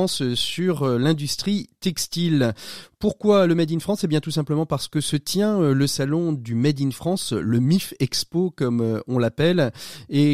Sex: male